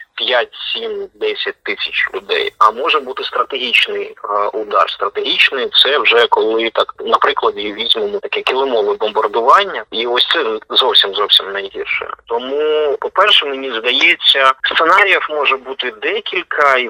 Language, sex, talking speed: Czech, male, 115 wpm